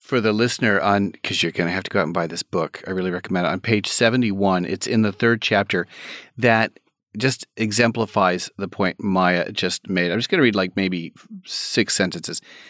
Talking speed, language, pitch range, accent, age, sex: 210 wpm, English, 95-120 Hz, American, 40-59, male